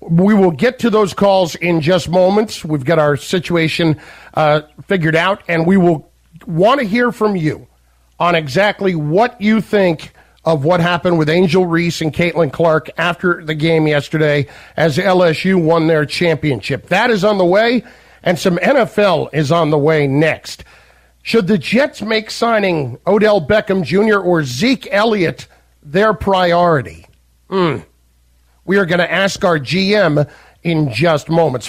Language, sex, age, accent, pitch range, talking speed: English, male, 50-69, American, 155-195 Hz, 160 wpm